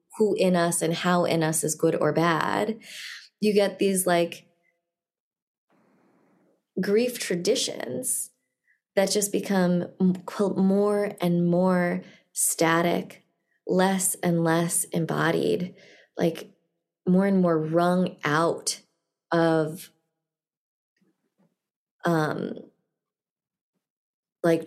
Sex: female